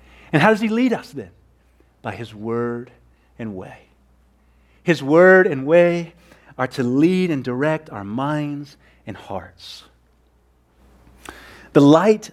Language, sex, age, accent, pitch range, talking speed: English, male, 40-59, American, 115-185 Hz, 130 wpm